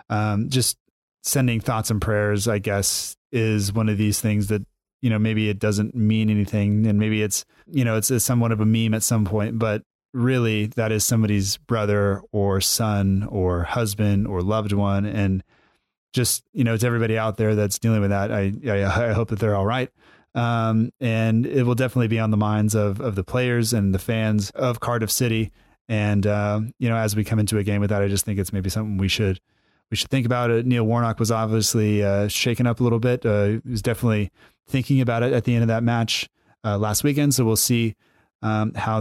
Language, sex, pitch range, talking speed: English, male, 105-120 Hz, 220 wpm